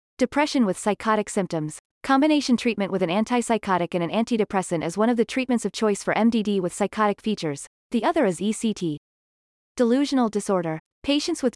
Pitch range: 185-240 Hz